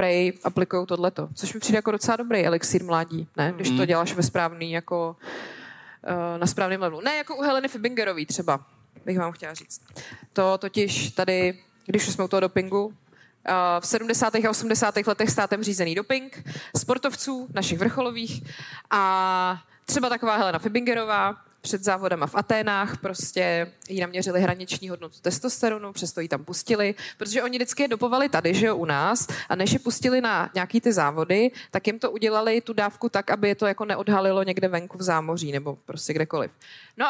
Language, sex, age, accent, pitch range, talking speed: Czech, female, 20-39, native, 175-225 Hz, 170 wpm